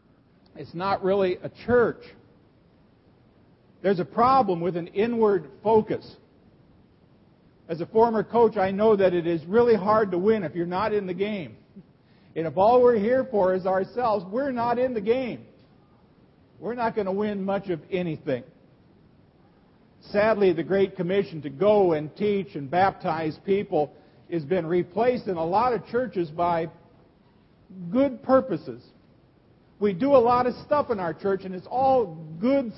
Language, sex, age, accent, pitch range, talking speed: English, male, 50-69, American, 175-230 Hz, 160 wpm